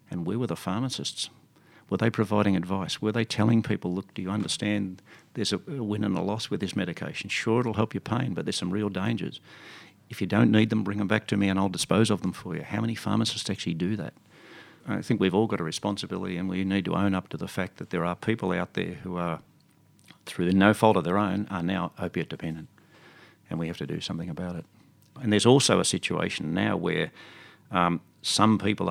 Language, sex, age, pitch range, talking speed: English, male, 50-69, 95-110 Hz, 230 wpm